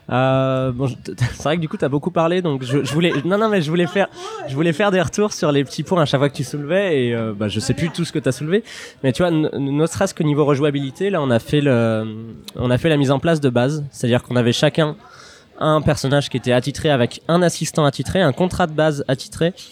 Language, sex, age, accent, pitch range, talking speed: French, male, 20-39, French, 125-165 Hz, 280 wpm